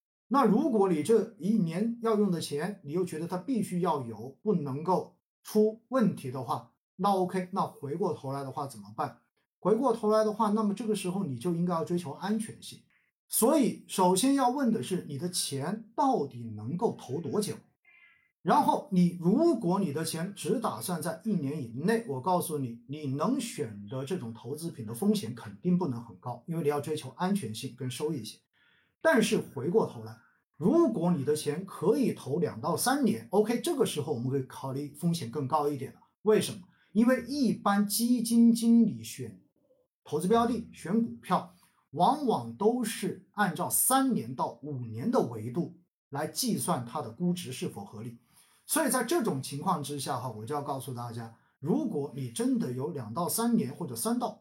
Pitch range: 140-220 Hz